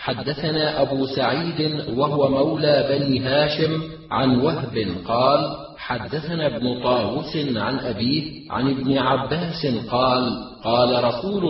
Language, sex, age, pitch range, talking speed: Arabic, male, 40-59, 130-150 Hz, 110 wpm